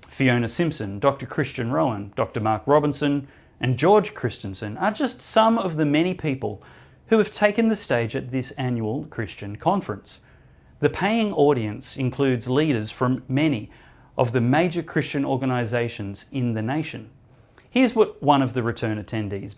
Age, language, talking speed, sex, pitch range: 30-49, English, 155 wpm, male, 120-160 Hz